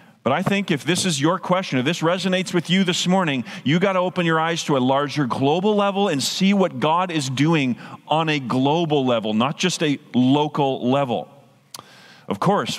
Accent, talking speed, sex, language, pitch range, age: American, 200 wpm, male, English, 150-205 Hz, 40-59